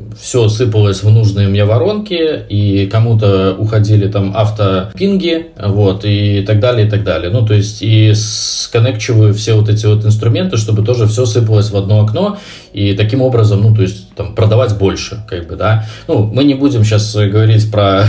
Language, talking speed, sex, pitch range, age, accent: Russian, 180 wpm, male, 105-115 Hz, 20-39, native